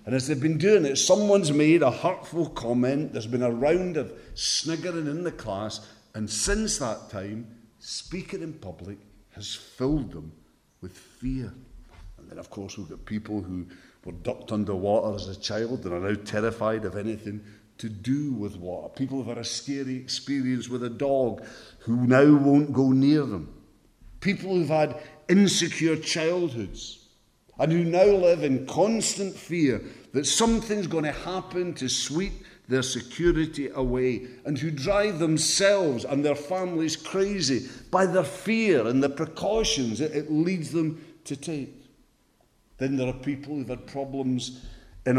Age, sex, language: 50-69, male, English